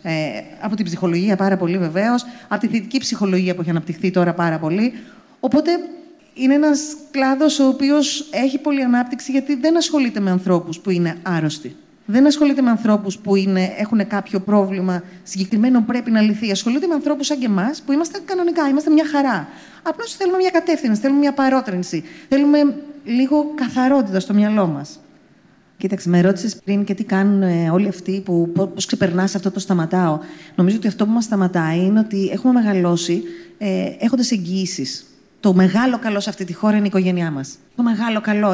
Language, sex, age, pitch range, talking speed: Greek, female, 30-49, 190-275 Hz, 175 wpm